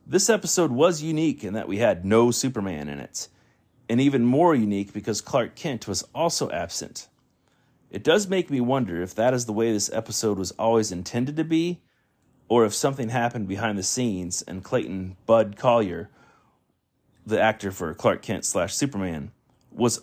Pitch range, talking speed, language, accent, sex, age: 100-130 Hz, 175 wpm, English, American, male, 30-49